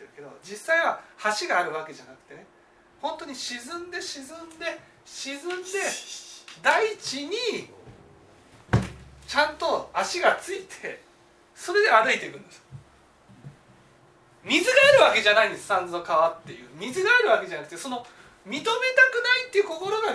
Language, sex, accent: Japanese, male, native